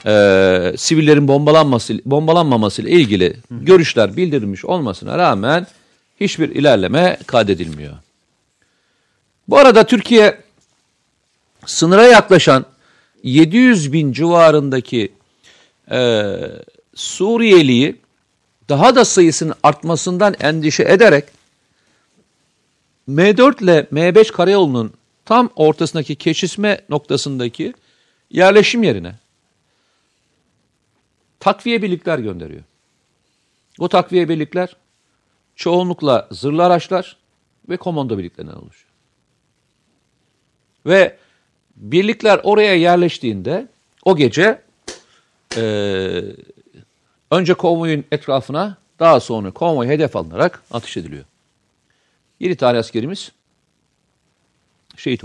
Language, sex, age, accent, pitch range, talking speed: Turkish, male, 50-69, native, 115-180 Hz, 80 wpm